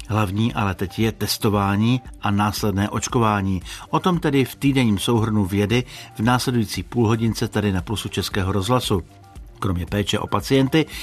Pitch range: 100-120 Hz